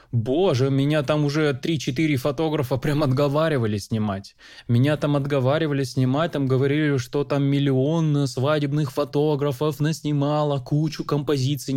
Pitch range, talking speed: 125-155 Hz, 115 wpm